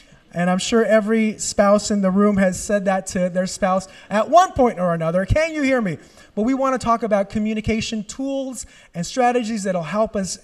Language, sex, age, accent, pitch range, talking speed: English, male, 30-49, American, 180-240 Hz, 215 wpm